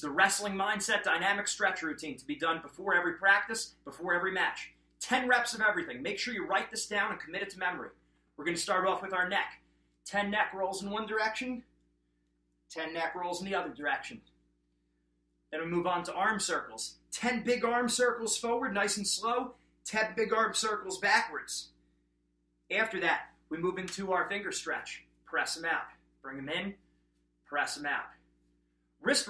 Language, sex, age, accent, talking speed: English, male, 30-49, American, 180 wpm